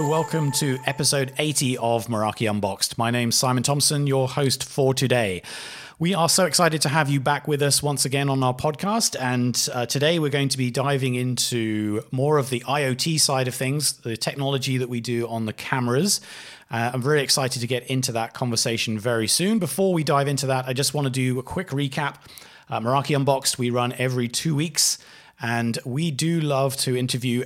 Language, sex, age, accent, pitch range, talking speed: English, male, 30-49, British, 120-145 Hz, 205 wpm